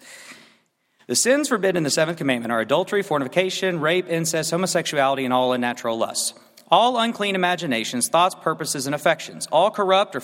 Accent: American